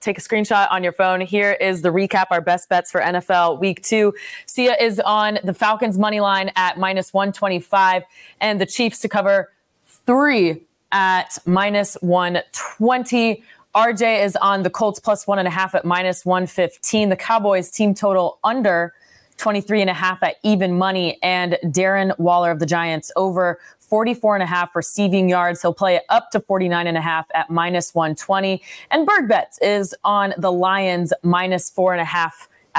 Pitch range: 175-210 Hz